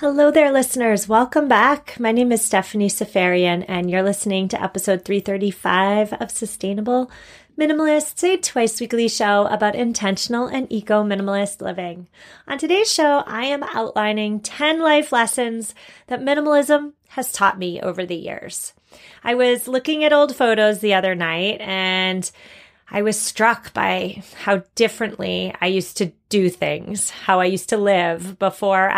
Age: 30-49